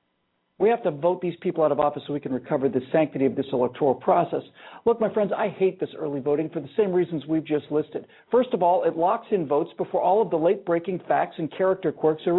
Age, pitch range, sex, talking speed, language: 50-69, 165-235 Hz, male, 250 wpm, English